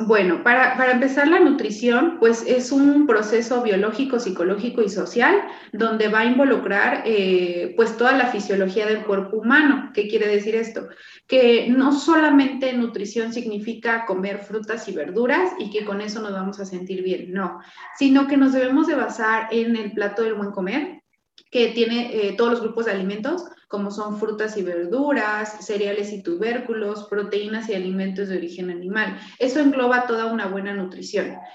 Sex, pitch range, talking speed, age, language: female, 200-240 Hz, 170 wpm, 30-49, Spanish